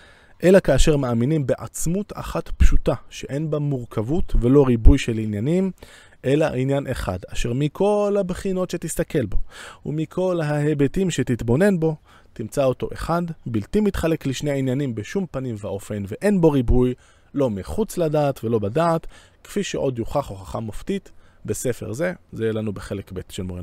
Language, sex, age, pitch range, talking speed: Hebrew, male, 20-39, 105-150 Hz, 145 wpm